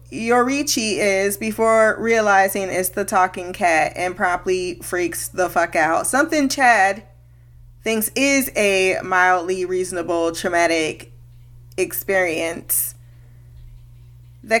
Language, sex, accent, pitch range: English, female, American, 165-225 Hz